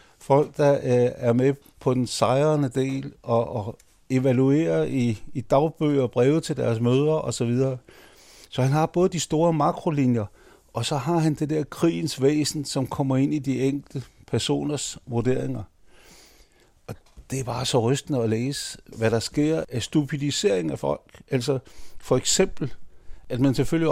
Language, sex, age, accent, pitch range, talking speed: Danish, male, 60-79, native, 120-145 Hz, 165 wpm